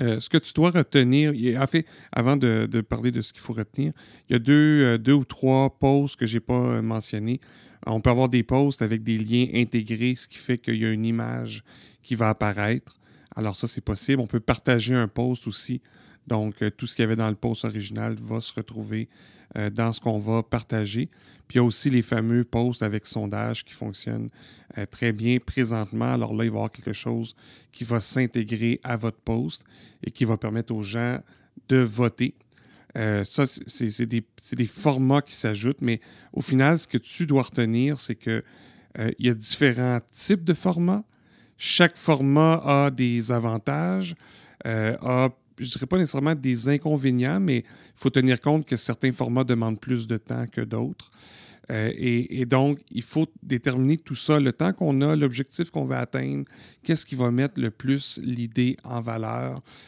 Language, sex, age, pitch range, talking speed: French, male, 40-59, 115-135 Hz, 195 wpm